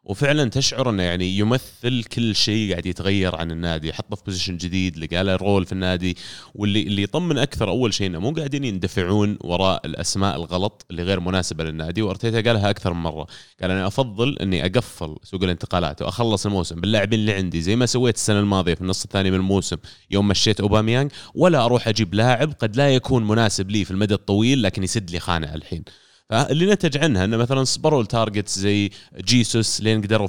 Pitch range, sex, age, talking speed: 95-120 Hz, male, 20-39, 185 wpm